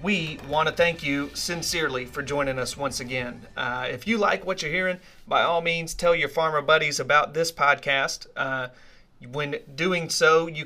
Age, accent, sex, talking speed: 40-59, American, male, 185 wpm